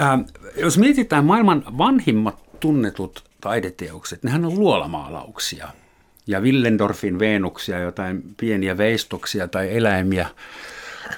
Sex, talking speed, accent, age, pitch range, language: male, 90 wpm, native, 60-79, 105-155 Hz, Finnish